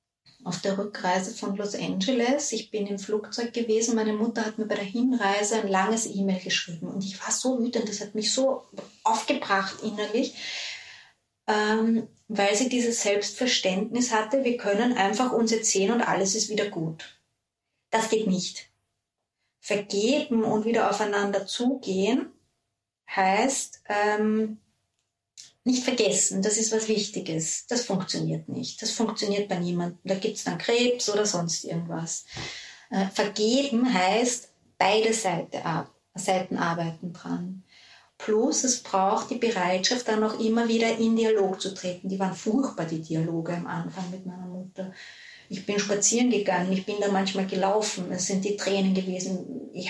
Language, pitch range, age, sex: English, 190-225 Hz, 30-49, female